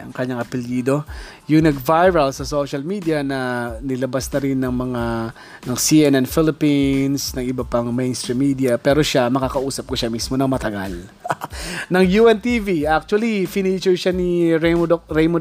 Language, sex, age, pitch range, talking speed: Filipino, male, 20-39, 130-165 Hz, 140 wpm